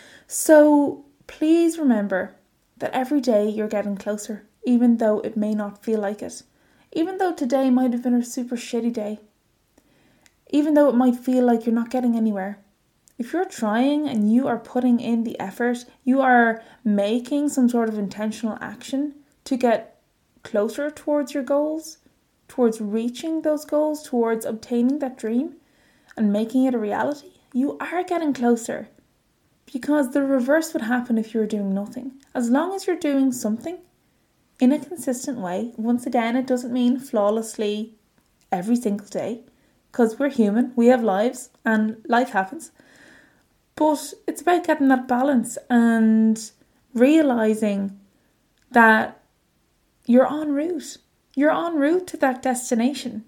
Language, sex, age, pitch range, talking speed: English, female, 20-39, 225-285 Hz, 150 wpm